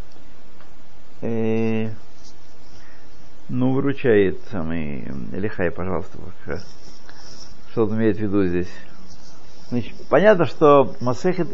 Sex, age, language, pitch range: male, 60-79, Russian, 105-150 Hz